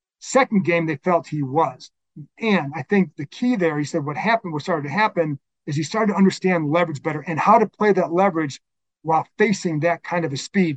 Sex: male